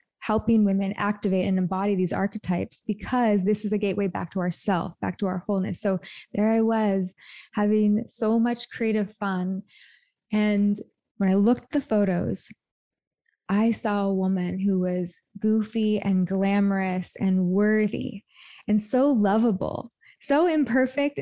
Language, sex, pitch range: English, female, 190-225 Hz